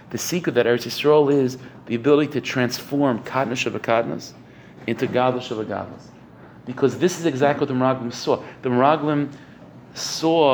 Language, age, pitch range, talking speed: English, 40-59, 115-135 Hz, 155 wpm